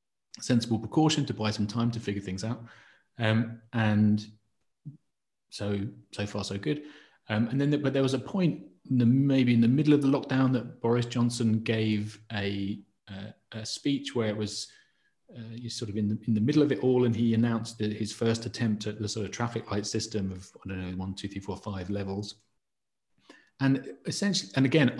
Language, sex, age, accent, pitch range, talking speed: English, male, 30-49, British, 105-130 Hz, 205 wpm